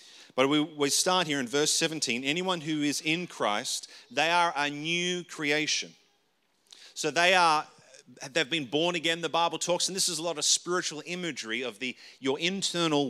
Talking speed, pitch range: 185 wpm, 140-175 Hz